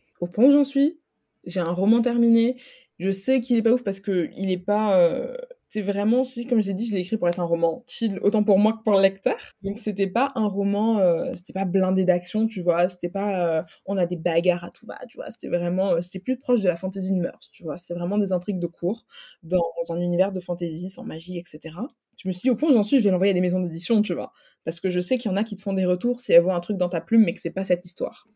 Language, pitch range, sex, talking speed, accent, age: French, 180-225 Hz, female, 290 wpm, French, 20-39